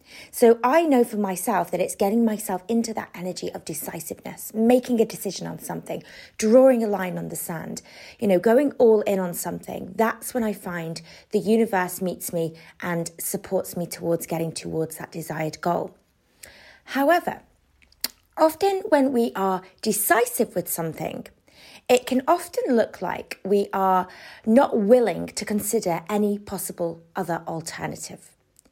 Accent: British